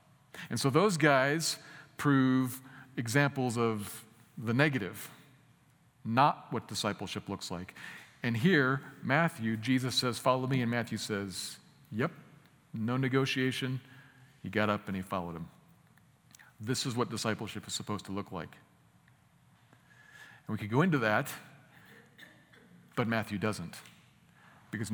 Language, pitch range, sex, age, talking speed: English, 105-135 Hz, male, 40-59, 130 wpm